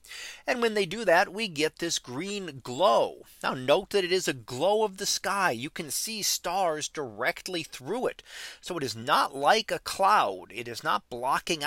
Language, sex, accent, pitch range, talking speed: English, male, American, 130-185 Hz, 195 wpm